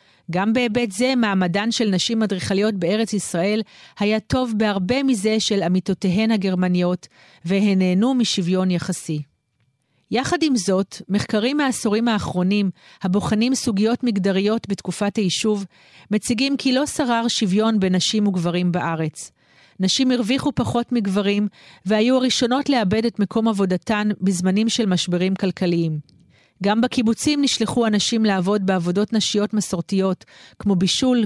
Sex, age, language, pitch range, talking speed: female, 40-59, Hebrew, 185-230 Hz, 125 wpm